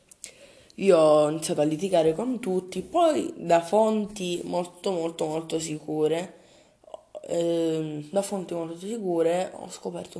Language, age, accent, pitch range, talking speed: Italian, 20-39, native, 155-195 Hz, 125 wpm